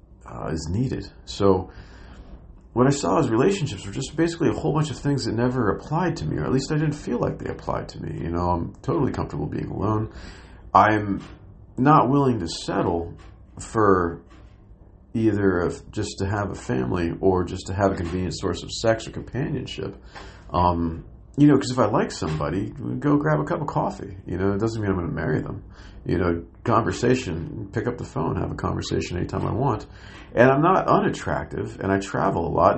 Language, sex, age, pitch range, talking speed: English, male, 40-59, 90-120 Hz, 200 wpm